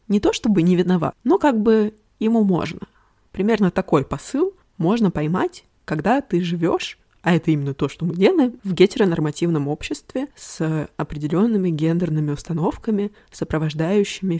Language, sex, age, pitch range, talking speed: Russian, female, 20-39, 160-205 Hz, 140 wpm